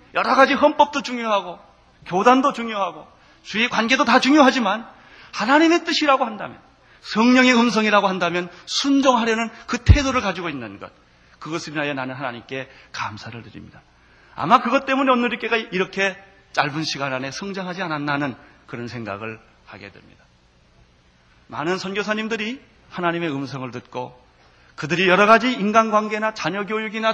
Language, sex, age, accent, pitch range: Korean, male, 30-49, native, 155-255 Hz